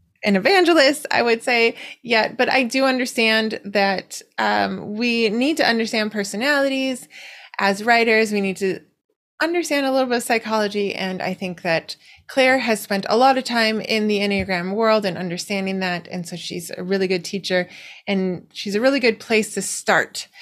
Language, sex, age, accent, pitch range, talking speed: English, female, 20-39, American, 190-245 Hz, 180 wpm